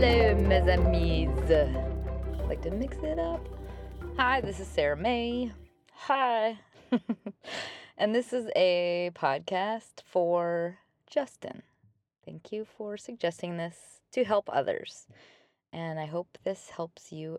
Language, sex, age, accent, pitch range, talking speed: English, female, 20-39, American, 155-210 Hz, 120 wpm